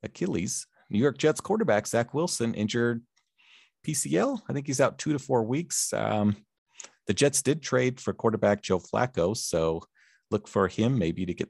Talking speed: 170 wpm